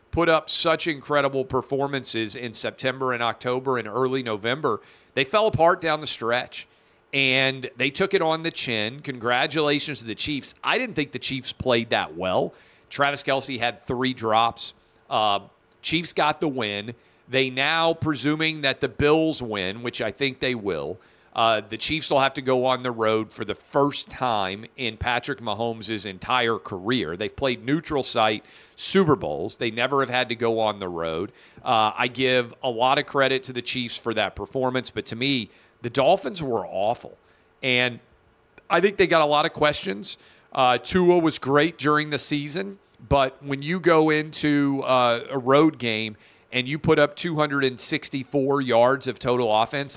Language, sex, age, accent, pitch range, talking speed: English, male, 40-59, American, 120-145 Hz, 175 wpm